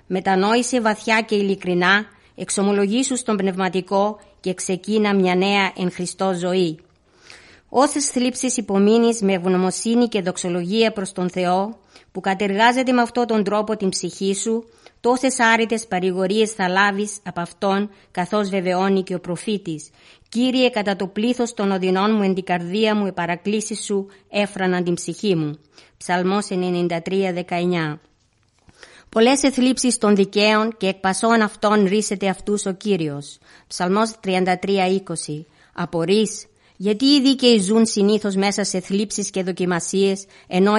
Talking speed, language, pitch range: 135 wpm, Greek, 180-215 Hz